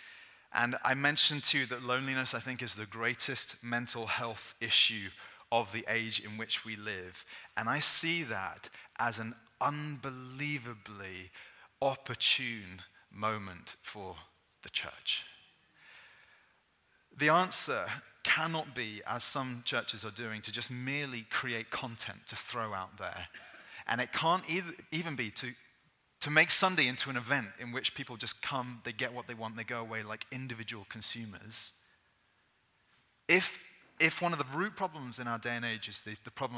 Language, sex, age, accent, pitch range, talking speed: English, male, 30-49, British, 110-135 Hz, 155 wpm